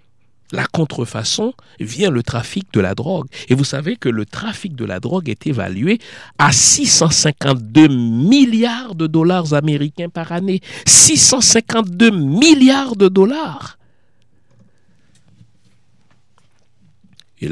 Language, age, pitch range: French, 60-79, 105-170 Hz